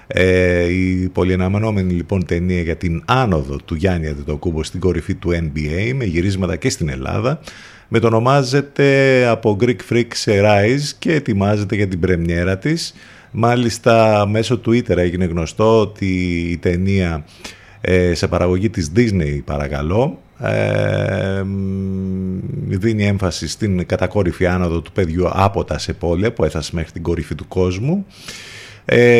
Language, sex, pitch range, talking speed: Greek, male, 85-110 Hz, 140 wpm